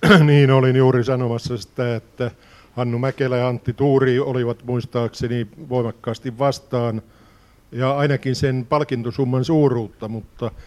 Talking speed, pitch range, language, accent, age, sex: 120 wpm, 115-130 Hz, Finnish, native, 50-69, male